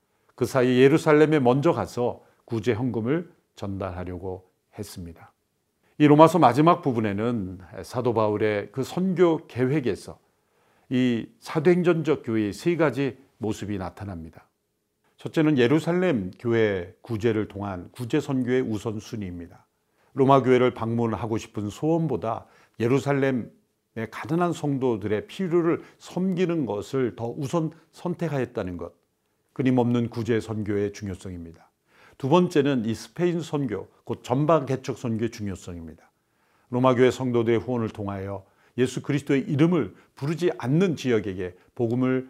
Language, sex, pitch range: Korean, male, 105-150 Hz